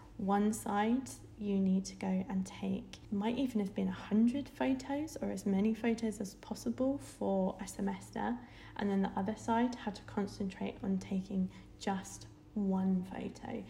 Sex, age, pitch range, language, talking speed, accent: female, 20-39, 190-230 Hz, English, 160 wpm, British